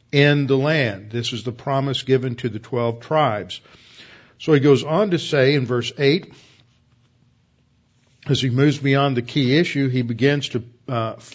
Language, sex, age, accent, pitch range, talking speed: English, male, 50-69, American, 120-145 Hz, 170 wpm